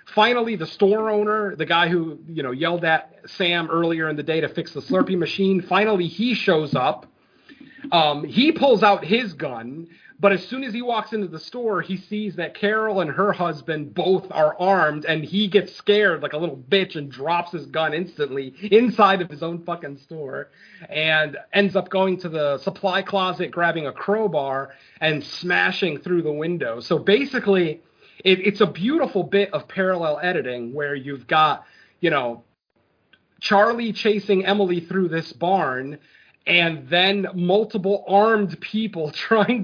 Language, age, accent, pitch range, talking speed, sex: English, 40-59, American, 155-200 Hz, 170 wpm, male